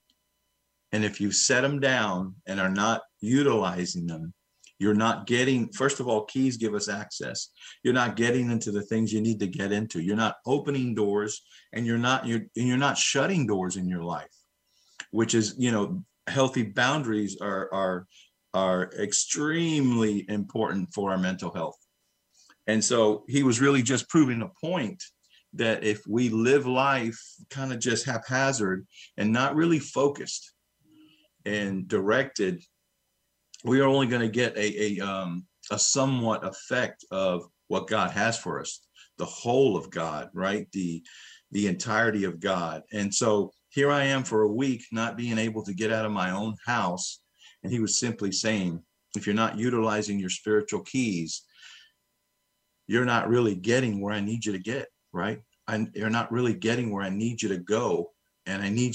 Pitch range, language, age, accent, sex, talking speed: 100-125 Hz, English, 50-69, American, male, 175 wpm